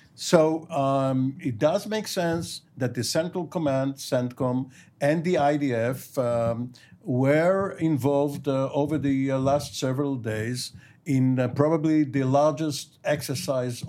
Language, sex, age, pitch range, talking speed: English, male, 60-79, 125-150 Hz, 130 wpm